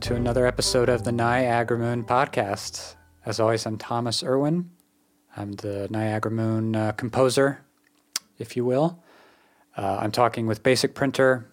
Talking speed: 145 wpm